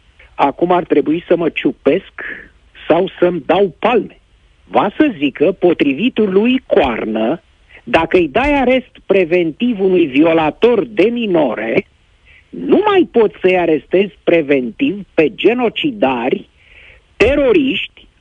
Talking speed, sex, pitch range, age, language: 110 wpm, male, 170-290 Hz, 50-69, Romanian